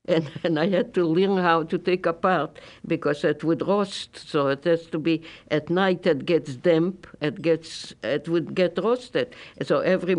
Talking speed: 195 wpm